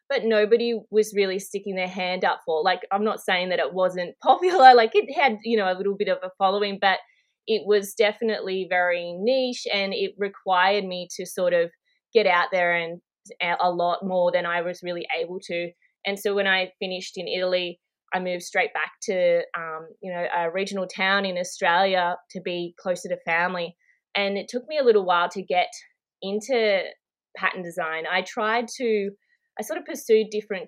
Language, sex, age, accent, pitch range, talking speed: English, female, 20-39, Australian, 180-225 Hz, 195 wpm